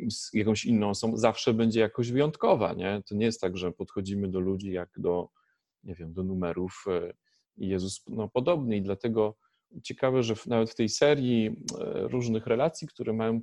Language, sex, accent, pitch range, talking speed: Polish, male, native, 110-145 Hz, 175 wpm